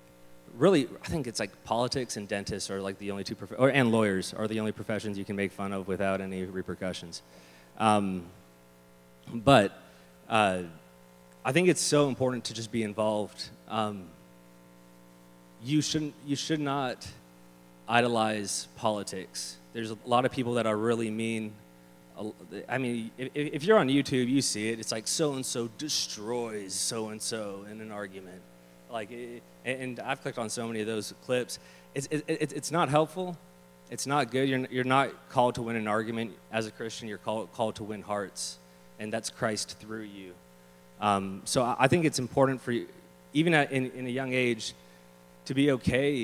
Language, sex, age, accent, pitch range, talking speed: English, male, 30-49, American, 90-125 Hz, 175 wpm